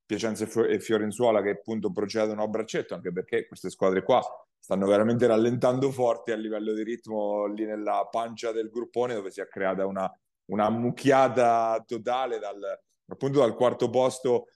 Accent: native